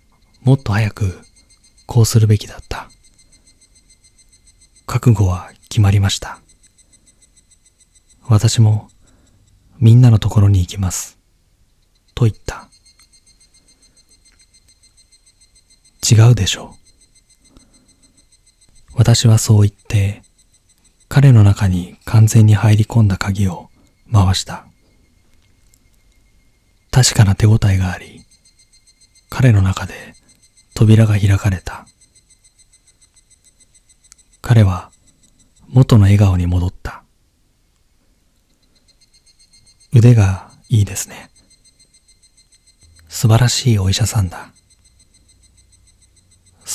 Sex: male